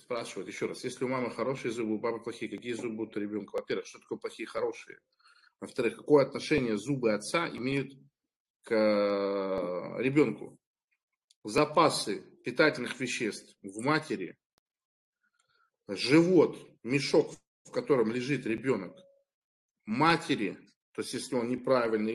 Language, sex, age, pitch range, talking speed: Russian, male, 40-59, 120-170 Hz, 120 wpm